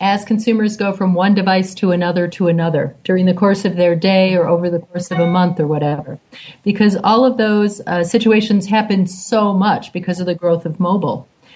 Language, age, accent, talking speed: English, 40-59, American, 210 wpm